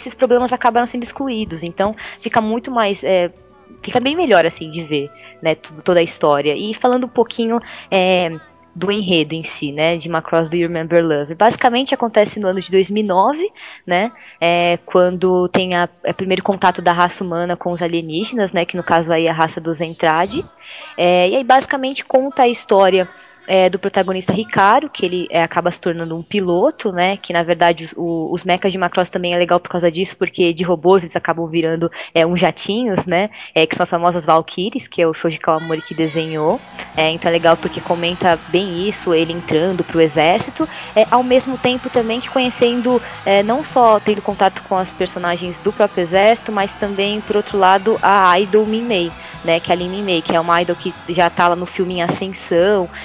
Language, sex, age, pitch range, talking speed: Portuguese, female, 20-39, 170-210 Hz, 200 wpm